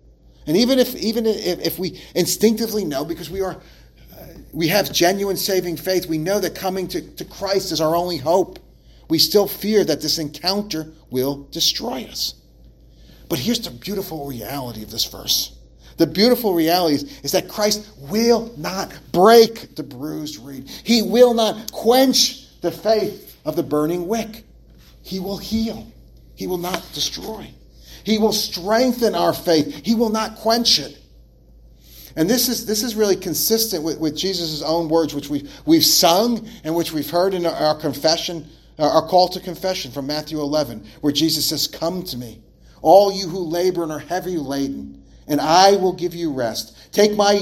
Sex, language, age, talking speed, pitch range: male, English, 40-59, 175 wpm, 145-195 Hz